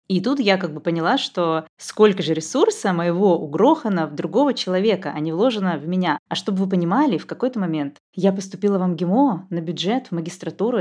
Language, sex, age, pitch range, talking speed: Russian, female, 20-39, 160-205 Hz, 195 wpm